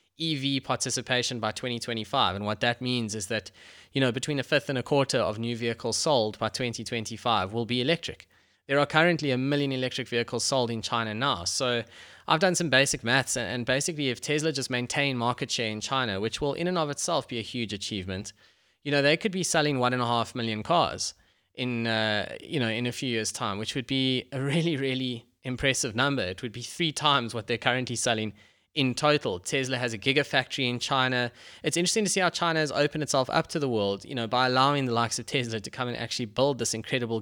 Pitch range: 115-140 Hz